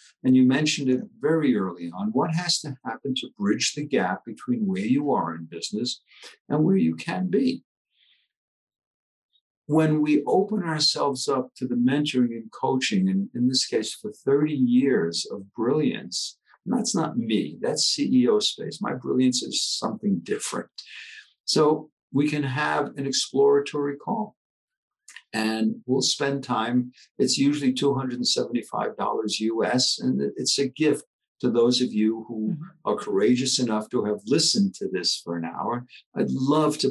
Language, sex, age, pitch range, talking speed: English, male, 60-79, 115-155 Hz, 155 wpm